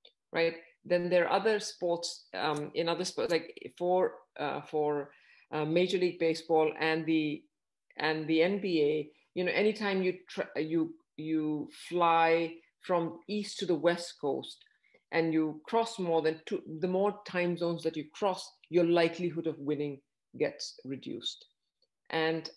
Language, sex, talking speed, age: English, female, 155 wpm, 50-69